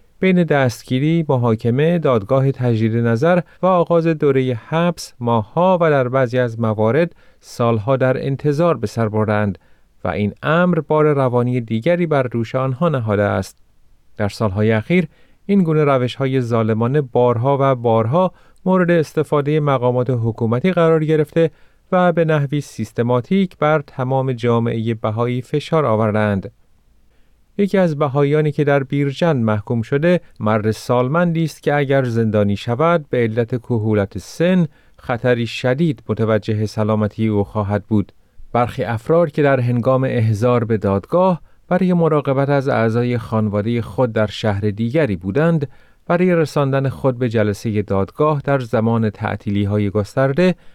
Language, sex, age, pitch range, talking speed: Persian, male, 30-49, 110-155 Hz, 130 wpm